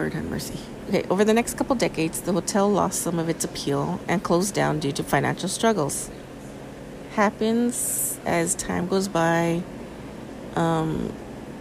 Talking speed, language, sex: 140 wpm, English, female